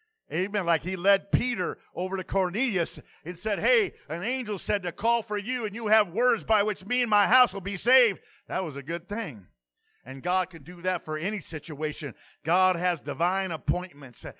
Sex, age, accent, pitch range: male, 50-69, American, 165-215 Hz